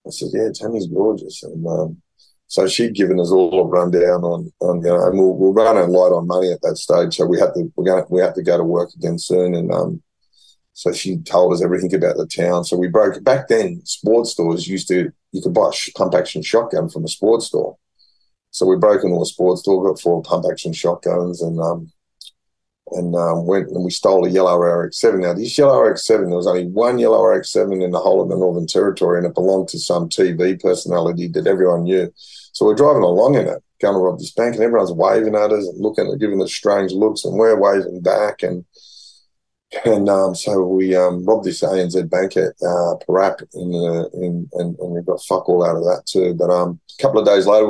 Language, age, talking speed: English, 30-49, 230 wpm